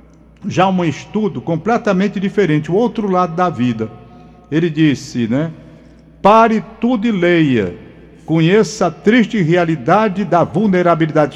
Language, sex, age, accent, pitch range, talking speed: Portuguese, male, 60-79, Brazilian, 150-205 Hz, 120 wpm